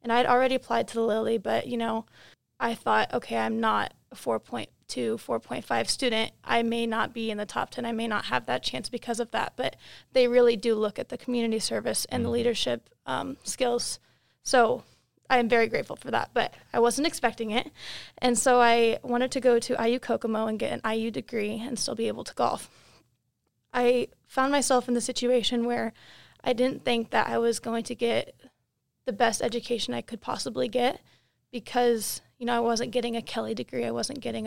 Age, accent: 20-39, American